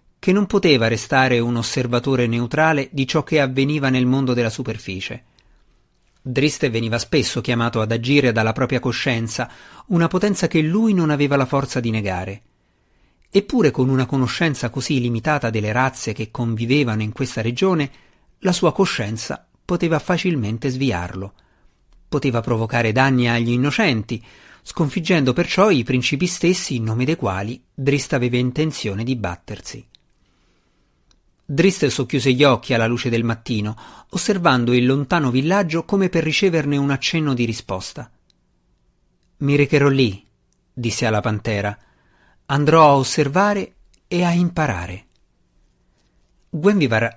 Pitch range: 115-150 Hz